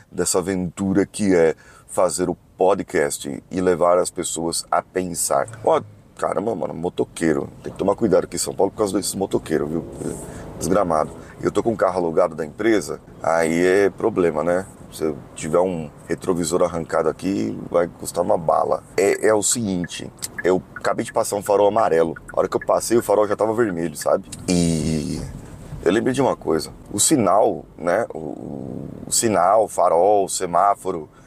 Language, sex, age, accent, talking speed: Portuguese, male, 30-49, Brazilian, 180 wpm